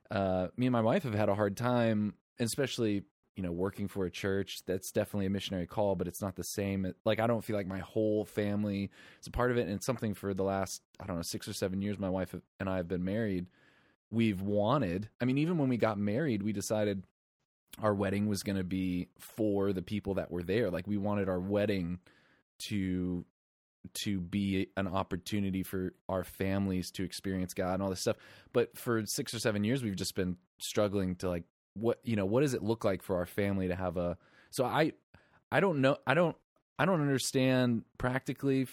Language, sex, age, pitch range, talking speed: English, male, 20-39, 95-115 Hz, 215 wpm